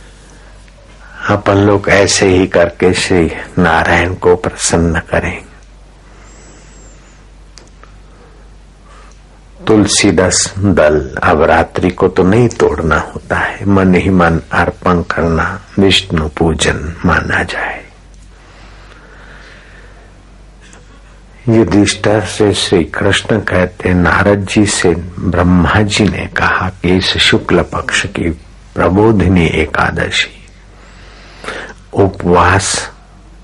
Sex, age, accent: male, 60-79, native